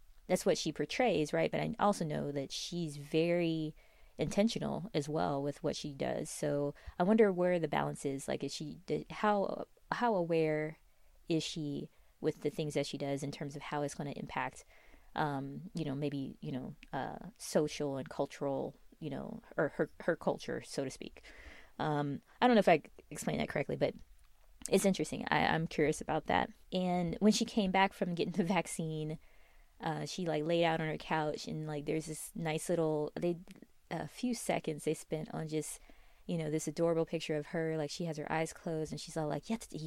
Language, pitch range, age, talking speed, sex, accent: English, 150-180 Hz, 20-39, 200 wpm, female, American